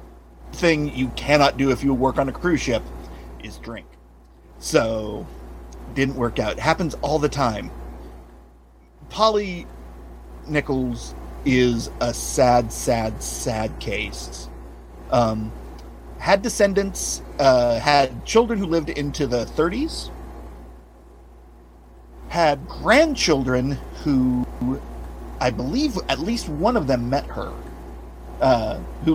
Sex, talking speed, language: male, 110 wpm, English